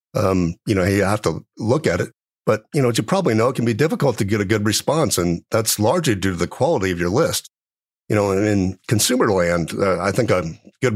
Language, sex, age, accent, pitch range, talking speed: English, male, 50-69, American, 95-115 Hz, 245 wpm